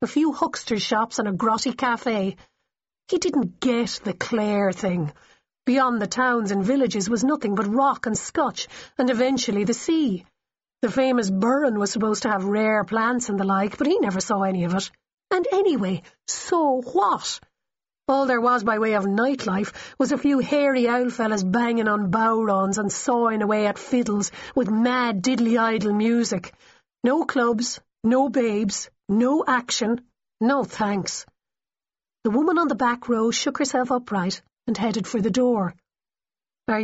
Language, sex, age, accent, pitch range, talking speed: English, female, 40-59, Irish, 210-265 Hz, 165 wpm